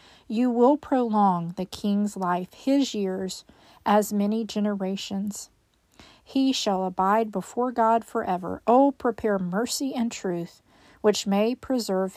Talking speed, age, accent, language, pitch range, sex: 130 wpm, 40-59, American, English, 190-235 Hz, female